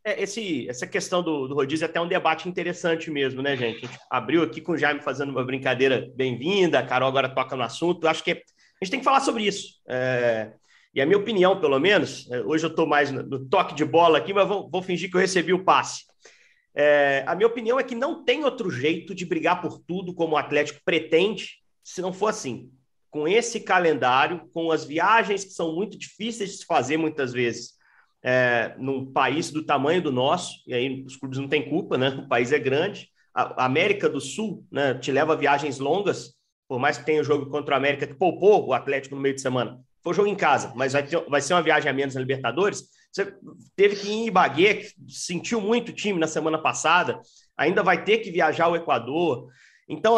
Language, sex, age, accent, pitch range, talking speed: Portuguese, male, 40-59, Brazilian, 140-200 Hz, 220 wpm